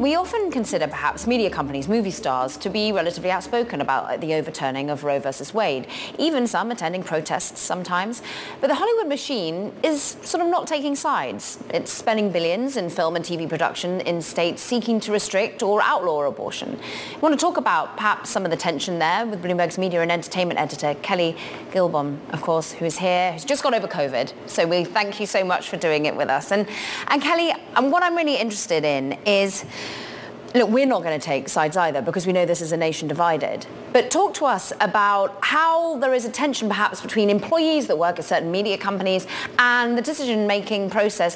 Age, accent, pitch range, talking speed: 20-39, British, 170-235 Hz, 205 wpm